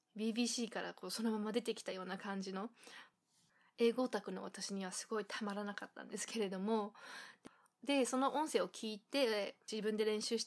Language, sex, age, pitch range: Japanese, female, 20-39, 200-250 Hz